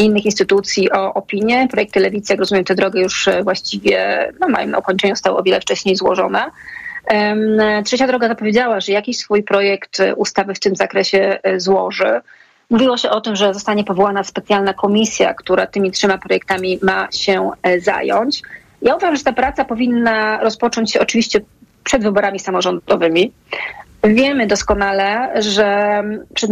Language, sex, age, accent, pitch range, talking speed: Polish, female, 30-49, native, 195-220 Hz, 150 wpm